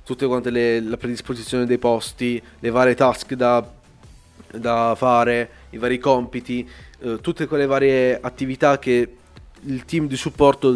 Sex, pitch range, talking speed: male, 120-145 Hz, 145 wpm